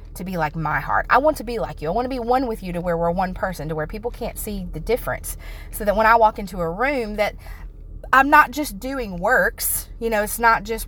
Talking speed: 270 wpm